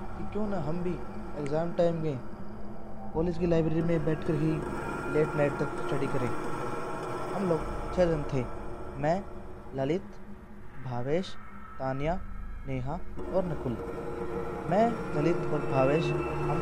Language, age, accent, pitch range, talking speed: Hindi, 20-39, native, 130-165 Hz, 125 wpm